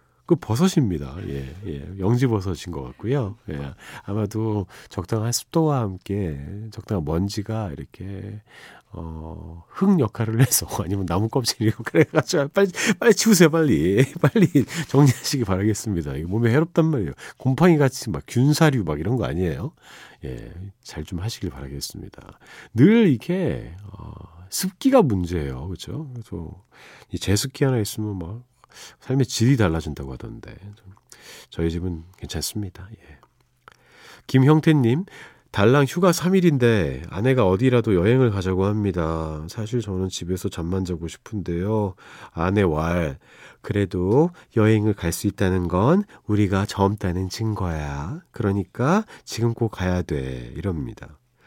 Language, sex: Korean, male